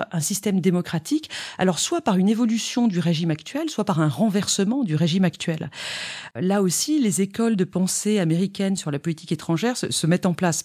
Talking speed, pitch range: 185 wpm, 170-220 Hz